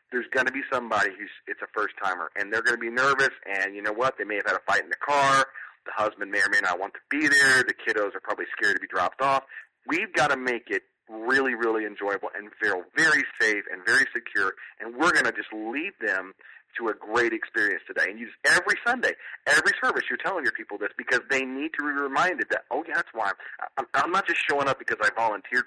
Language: English